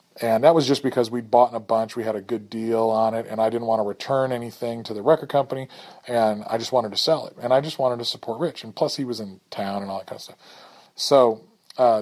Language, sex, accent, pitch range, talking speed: English, male, American, 110-145 Hz, 275 wpm